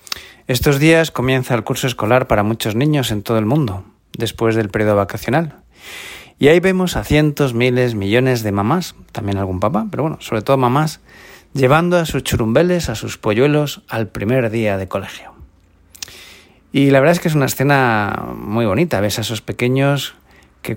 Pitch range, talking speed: 105-135 Hz, 175 wpm